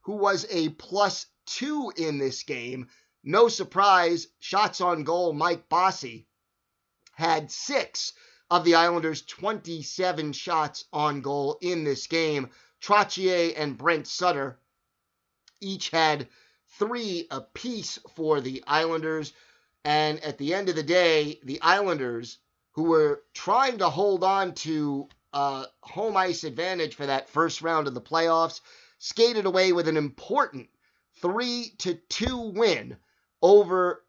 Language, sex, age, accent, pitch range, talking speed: English, male, 30-49, American, 150-195 Hz, 130 wpm